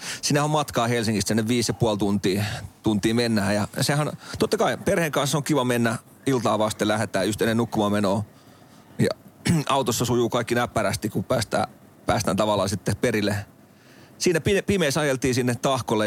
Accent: native